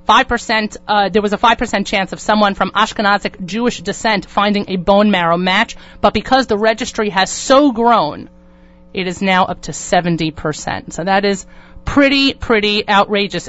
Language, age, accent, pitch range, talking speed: English, 30-49, American, 190-235 Hz, 165 wpm